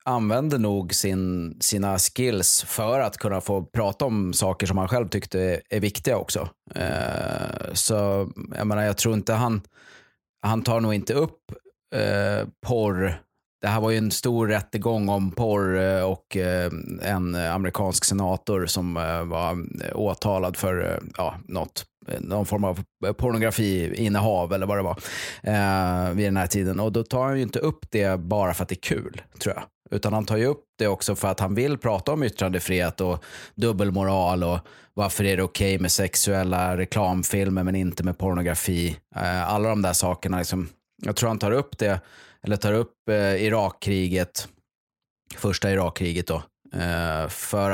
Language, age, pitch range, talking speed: Swedish, 30-49, 90-110 Hz, 170 wpm